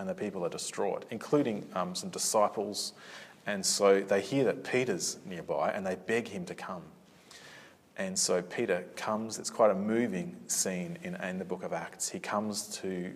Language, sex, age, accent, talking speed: English, male, 30-49, Australian, 180 wpm